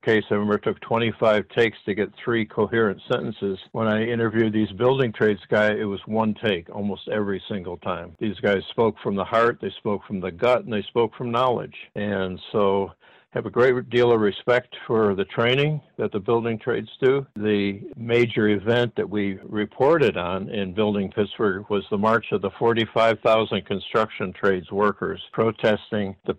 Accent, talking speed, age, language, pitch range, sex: American, 180 wpm, 60-79, English, 100-115 Hz, male